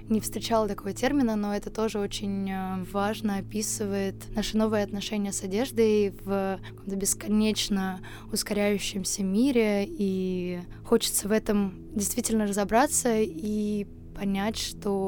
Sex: female